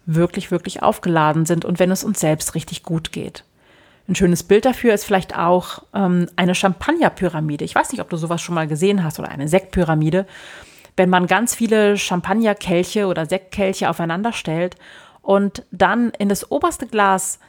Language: German